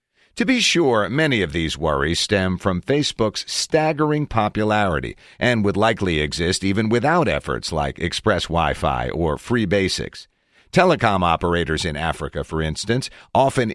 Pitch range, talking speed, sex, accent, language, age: 85-130 Hz, 140 wpm, male, American, English, 50-69